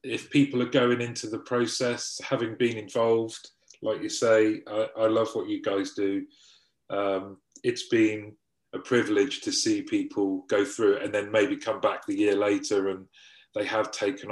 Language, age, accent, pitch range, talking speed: English, 30-49, British, 105-145 Hz, 180 wpm